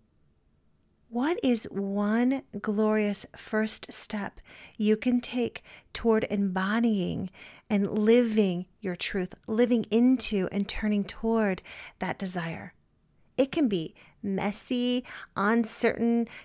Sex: female